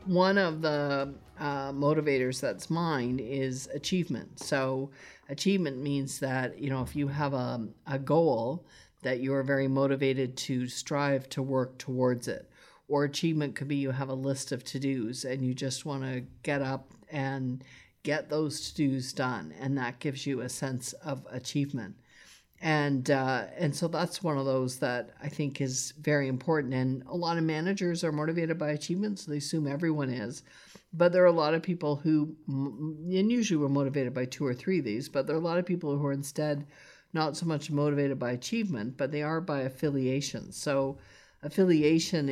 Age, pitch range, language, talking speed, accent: 50-69, 130-155 Hz, English, 185 wpm, American